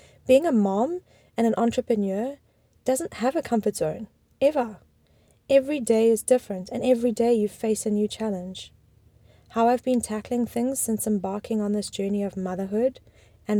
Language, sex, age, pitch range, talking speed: English, female, 20-39, 205-255 Hz, 165 wpm